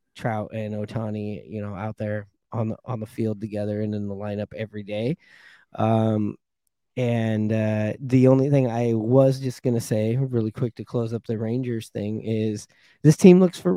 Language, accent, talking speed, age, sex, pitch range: English, American, 190 wpm, 20-39, male, 115-150 Hz